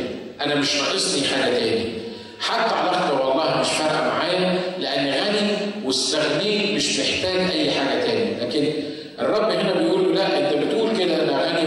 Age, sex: 50-69, male